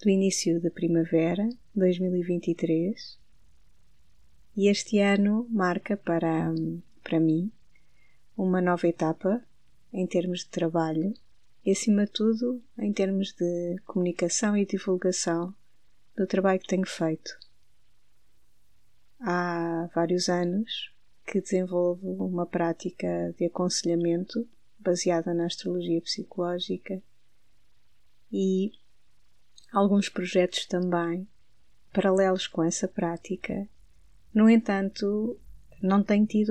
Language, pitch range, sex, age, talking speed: Portuguese, 170-200 Hz, female, 20-39, 100 wpm